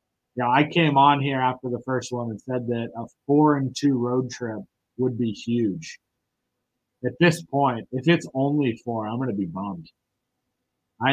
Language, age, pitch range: English, 30-49, 120-140 Hz